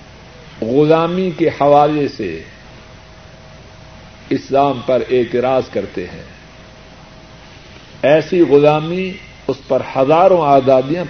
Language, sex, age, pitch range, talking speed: Urdu, male, 60-79, 120-165 Hz, 80 wpm